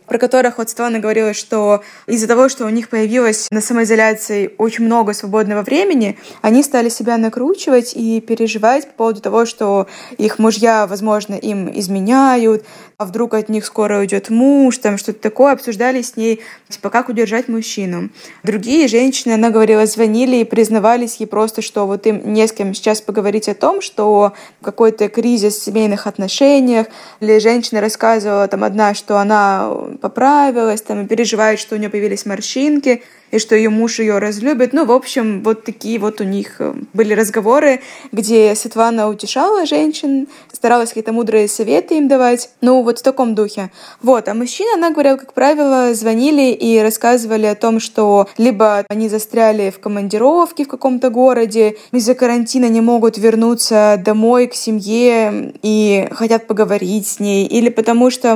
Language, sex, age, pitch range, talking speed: Russian, female, 20-39, 215-245 Hz, 160 wpm